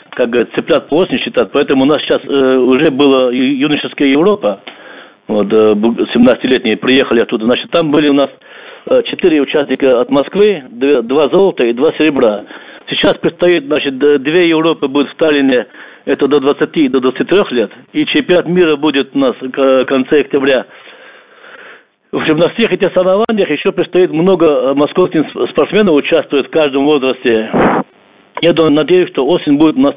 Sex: male